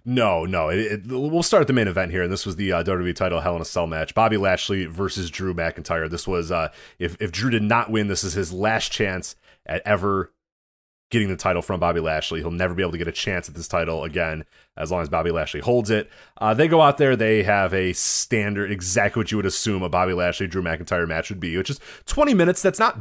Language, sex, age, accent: English, male, 30-49, American